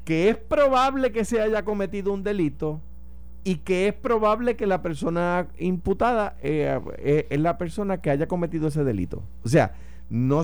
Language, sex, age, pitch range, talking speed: Spanish, male, 50-69, 110-165 Hz, 170 wpm